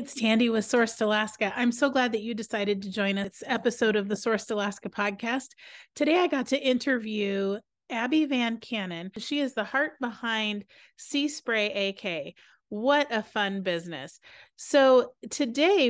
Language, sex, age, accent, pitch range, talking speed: English, female, 30-49, American, 200-250 Hz, 160 wpm